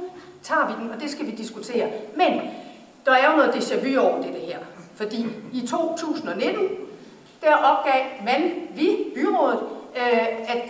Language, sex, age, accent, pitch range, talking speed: Danish, female, 60-79, native, 230-300 Hz, 155 wpm